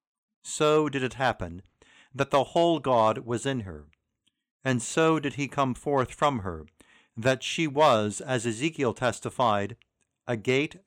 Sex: male